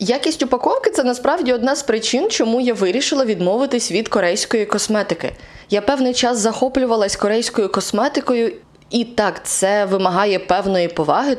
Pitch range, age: 165-215 Hz, 20-39